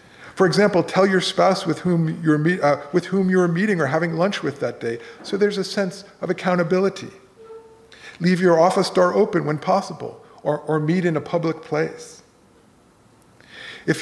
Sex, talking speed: male, 170 wpm